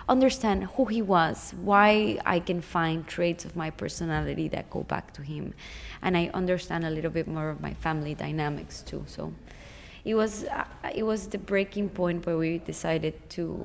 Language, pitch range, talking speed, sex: English, 160-195 Hz, 185 wpm, female